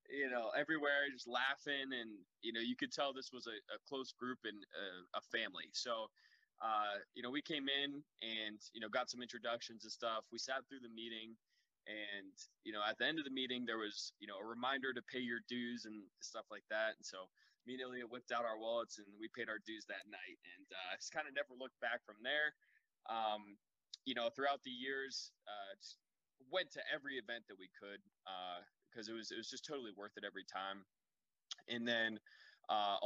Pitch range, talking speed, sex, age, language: 110-130 Hz, 215 wpm, male, 20-39, English